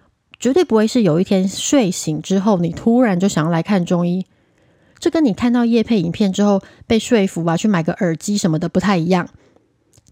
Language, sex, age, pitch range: Chinese, female, 20-39, 175-230 Hz